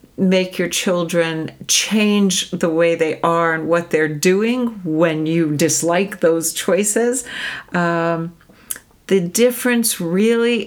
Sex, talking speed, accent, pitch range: female, 120 wpm, American, 170-230 Hz